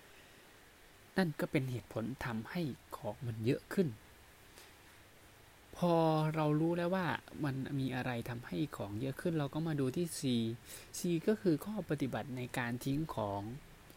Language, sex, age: Thai, male, 20-39